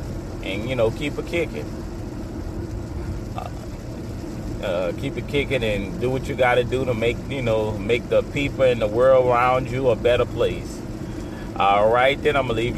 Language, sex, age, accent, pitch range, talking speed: English, male, 30-49, American, 110-130 Hz, 180 wpm